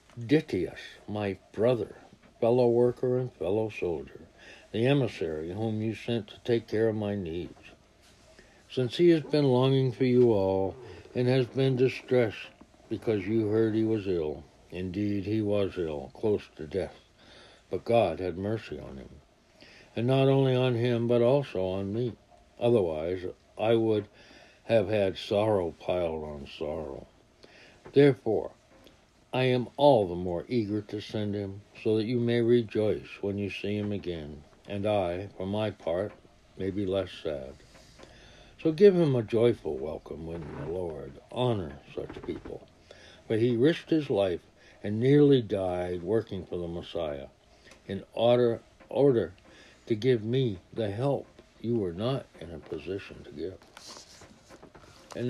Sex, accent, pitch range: male, American, 100-125 Hz